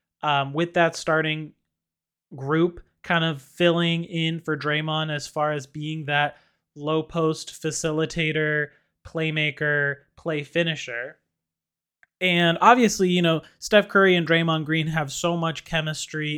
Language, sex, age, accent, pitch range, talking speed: English, male, 20-39, American, 145-170 Hz, 125 wpm